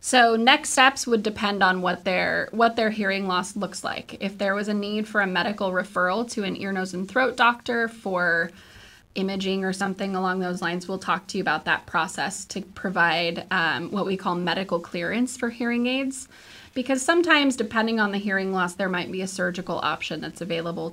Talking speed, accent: 200 wpm, American